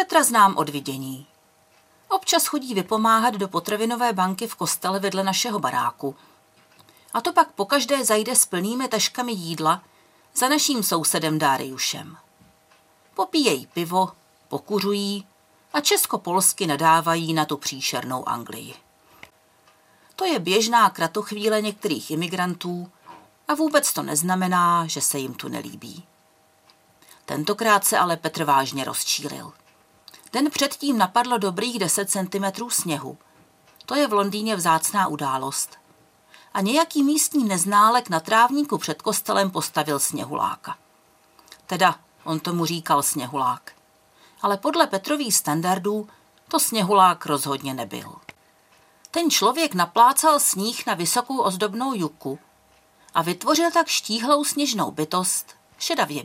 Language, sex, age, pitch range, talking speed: Czech, female, 40-59, 165-245 Hz, 120 wpm